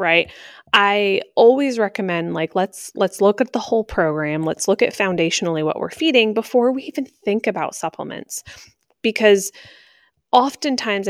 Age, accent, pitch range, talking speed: 20-39, American, 170-225 Hz, 145 wpm